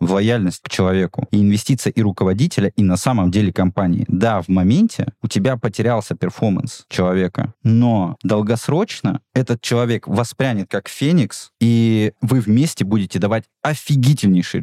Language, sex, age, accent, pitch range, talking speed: Russian, male, 20-39, native, 95-125 Hz, 140 wpm